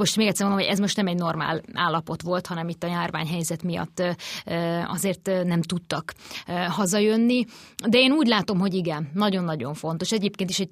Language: Hungarian